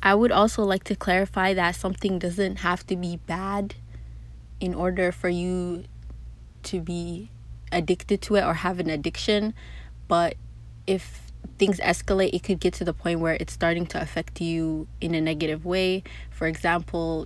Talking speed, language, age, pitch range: 165 wpm, English, 20-39, 160-195 Hz